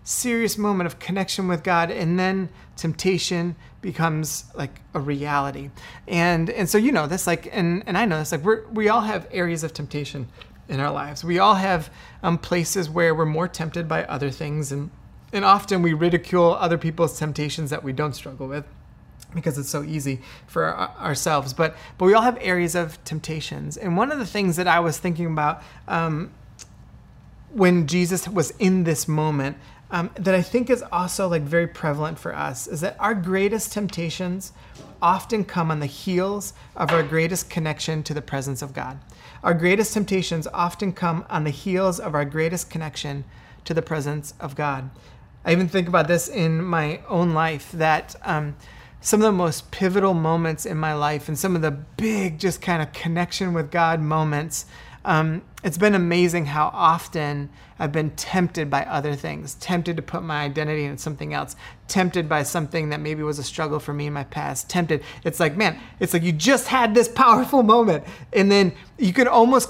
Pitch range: 150-185 Hz